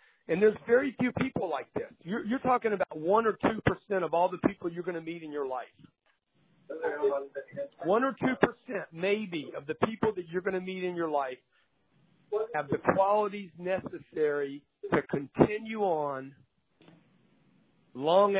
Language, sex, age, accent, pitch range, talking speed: English, male, 50-69, American, 155-210 Hz, 155 wpm